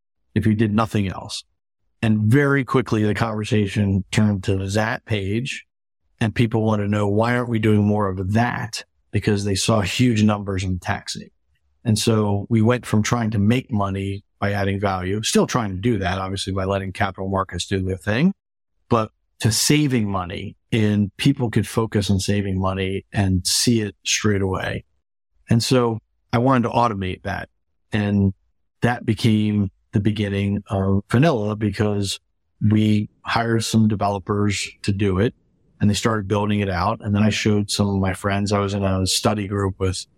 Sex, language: male, English